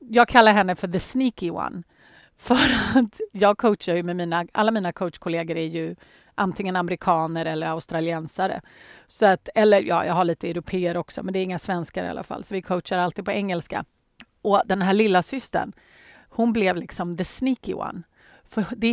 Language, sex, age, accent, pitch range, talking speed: Swedish, female, 30-49, native, 175-240 Hz, 185 wpm